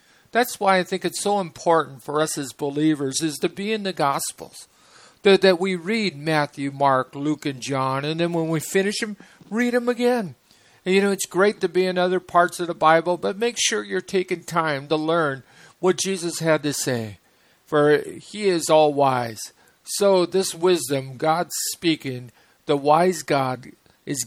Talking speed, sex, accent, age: 180 wpm, male, American, 50-69